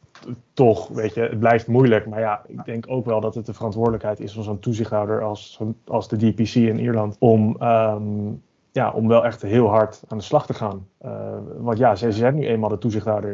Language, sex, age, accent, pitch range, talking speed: Dutch, male, 30-49, Dutch, 110-125 Hz, 220 wpm